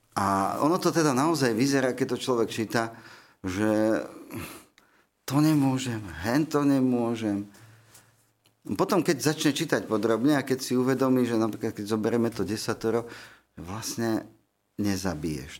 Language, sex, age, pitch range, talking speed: Slovak, male, 50-69, 100-120 Hz, 125 wpm